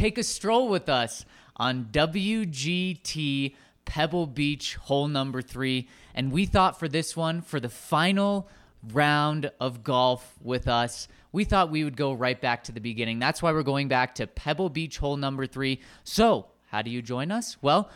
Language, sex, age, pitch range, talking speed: English, male, 20-39, 125-165 Hz, 180 wpm